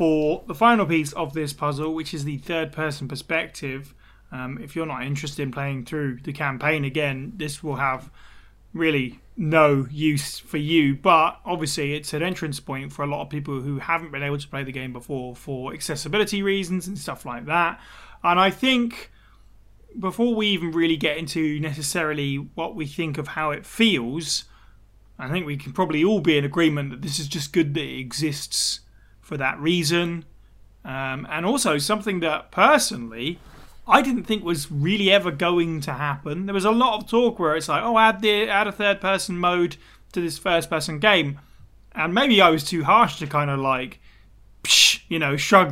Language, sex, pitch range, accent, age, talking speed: English, male, 140-170 Hz, British, 20-39, 190 wpm